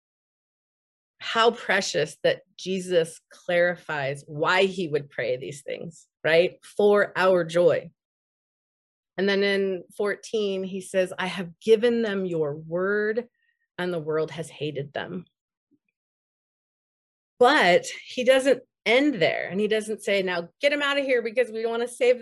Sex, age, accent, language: female, 30-49, American, English